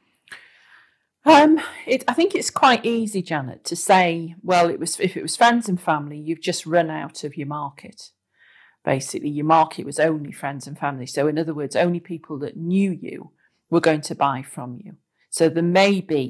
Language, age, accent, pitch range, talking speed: English, 40-59, British, 150-175 Hz, 195 wpm